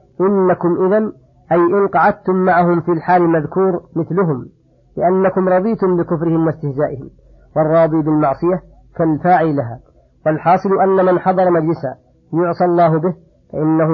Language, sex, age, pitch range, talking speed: Arabic, female, 50-69, 160-175 Hz, 110 wpm